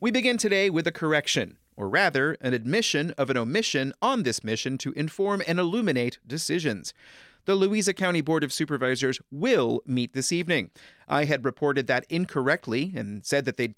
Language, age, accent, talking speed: English, 30-49, American, 175 wpm